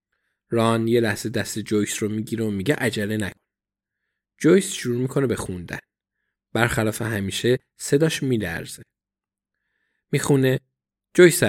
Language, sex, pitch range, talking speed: Persian, male, 100-130 Hz, 115 wpm